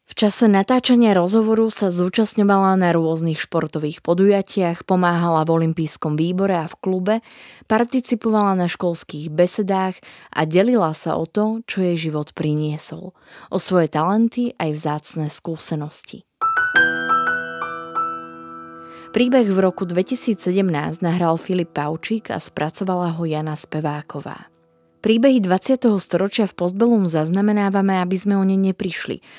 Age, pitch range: 20-39, 160-200 Hz